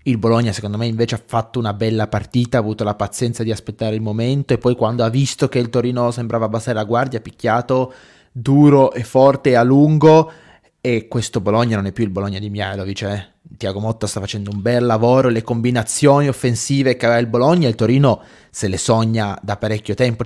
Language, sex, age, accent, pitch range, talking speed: Italian, male, 20-39, native, 110-130 Hz, 210 wpm